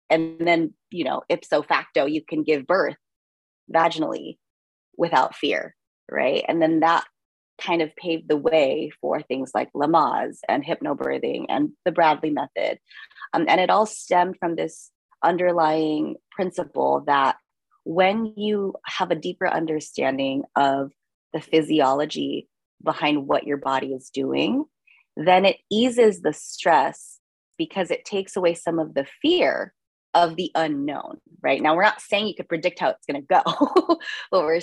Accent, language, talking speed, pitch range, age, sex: American, English, 150 wpm, 155-195 Hz, 30-49, female